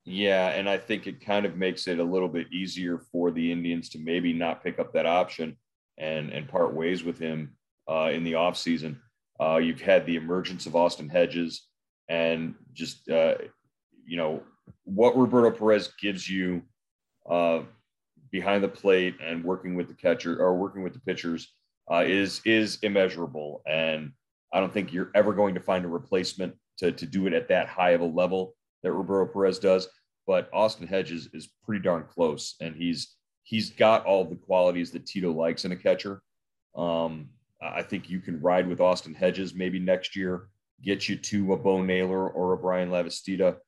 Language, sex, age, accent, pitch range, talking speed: English, male, 30-49, American, 85-95 Hz, 185 wpm